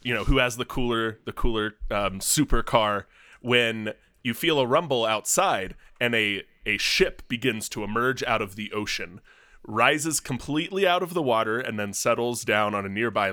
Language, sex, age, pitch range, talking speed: English, male, 20-39, 105-130 Hz, 180 wpm